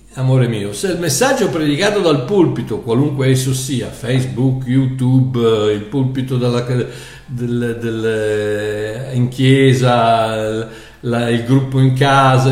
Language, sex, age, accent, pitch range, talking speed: Italian, male, 60-79, native, 120-170 Hz, 120 wpm